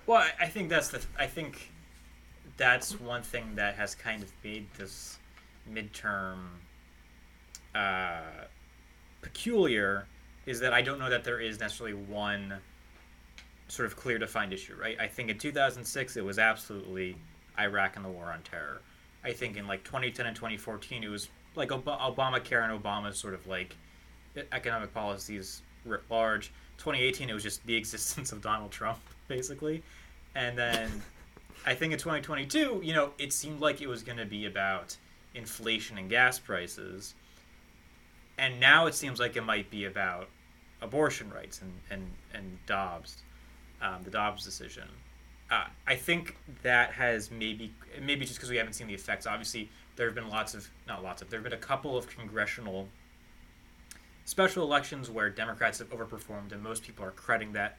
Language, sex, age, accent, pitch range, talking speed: English, male, 20-39, American, 90-120 Hz, 165 wpm